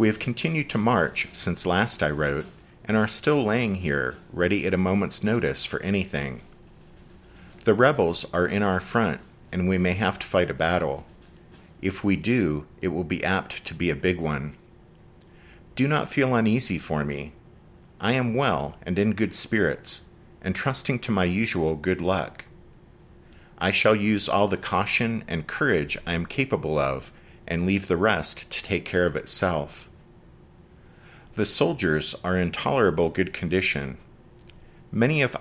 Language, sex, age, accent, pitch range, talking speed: English, male, 50-69, American, 85-110 Hz, 165 wpm